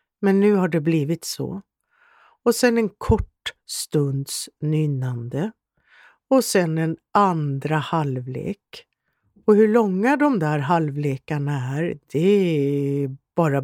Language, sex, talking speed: Swedish, female, 115 wpm